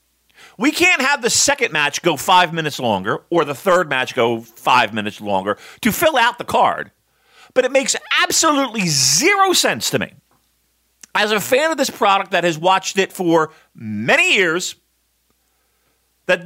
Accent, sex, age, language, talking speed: American, male, 40-59, English, 165 wpm